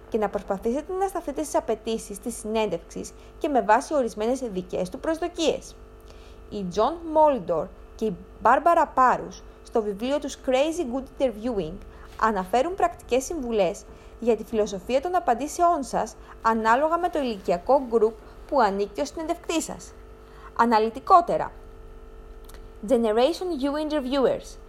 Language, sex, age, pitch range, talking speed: Greek, female, 20-39, 215-320 Hz, 125 wpm